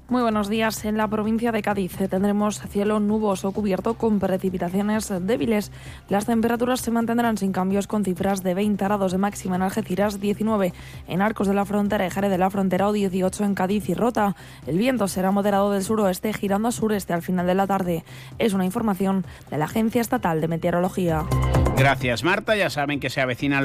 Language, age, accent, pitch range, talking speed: Spanish, 20-39, Spanish, 140-200 Hz, 195 wpm